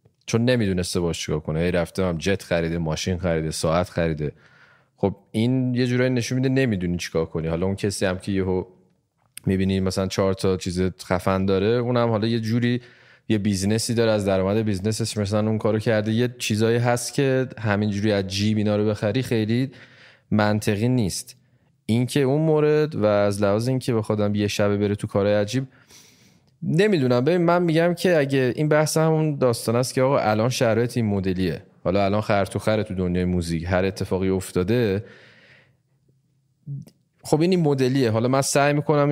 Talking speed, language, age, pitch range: 175 wpm, Persian, 20-39, 95-135 Hz